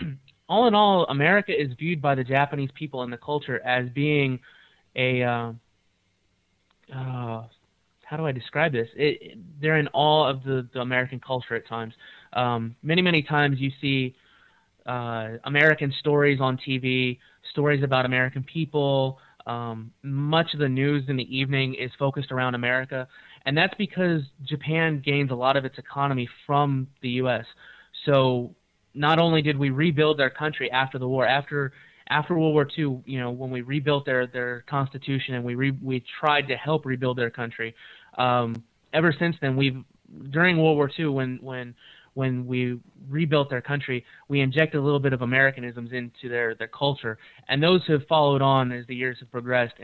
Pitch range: 125-150 Hz